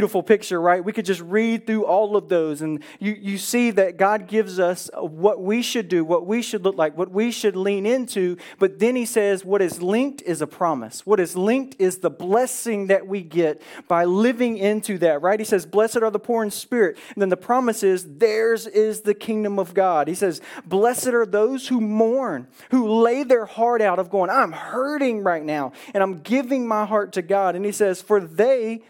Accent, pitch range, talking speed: American, 180-230 Hz, 220 wpm